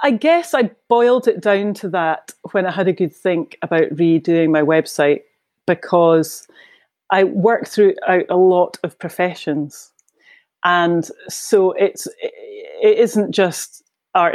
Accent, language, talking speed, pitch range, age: British, English, 140 wpm, 175-225 Hz, 30-49